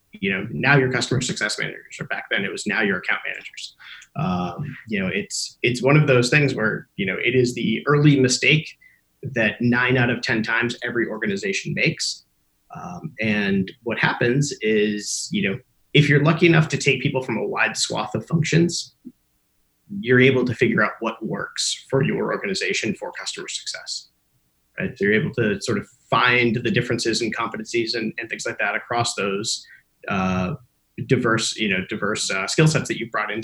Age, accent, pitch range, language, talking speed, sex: 30-49, American, 110-140 Hz, English, 190 wpm, male